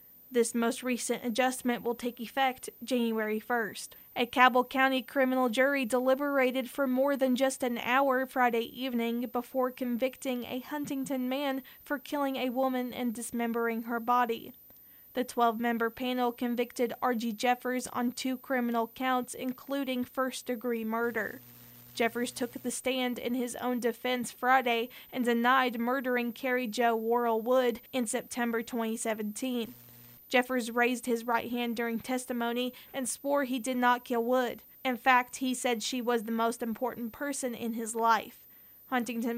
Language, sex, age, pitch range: English, female, 20-39, 235-255 Hz